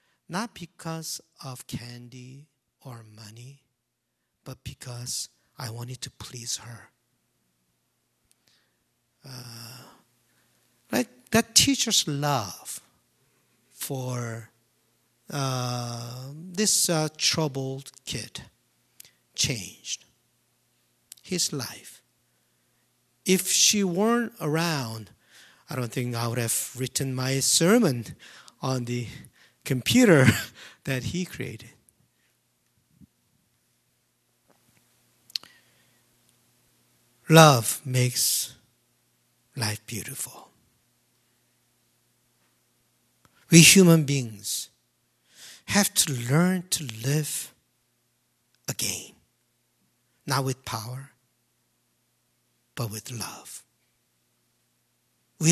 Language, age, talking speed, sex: English, 50-69, 75 wpm, male